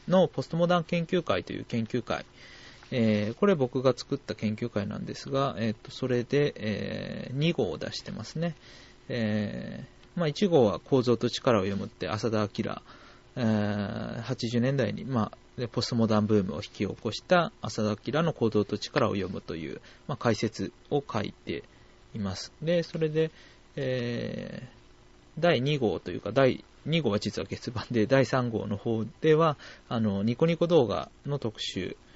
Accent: native